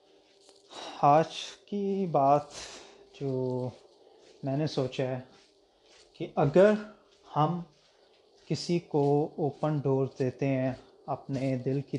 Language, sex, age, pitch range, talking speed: Urdu, male, 20-39, 135-175 Hz, 100 wpm